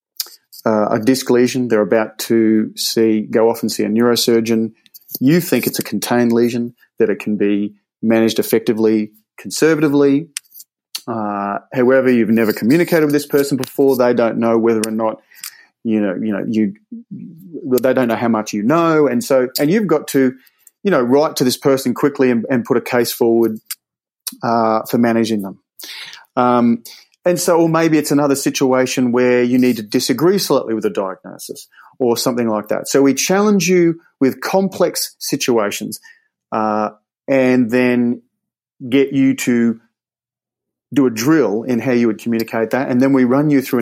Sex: male